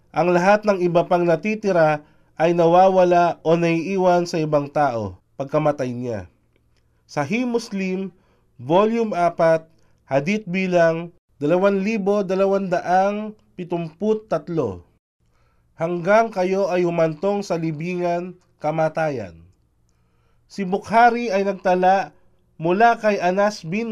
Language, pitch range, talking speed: Filipino, 160-195 Hz, 95 wpm